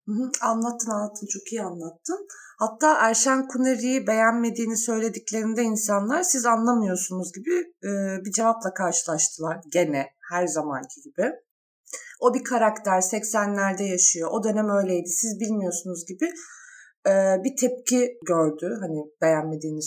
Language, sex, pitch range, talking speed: Turkish, female, 185-270 Hz, 110 wpm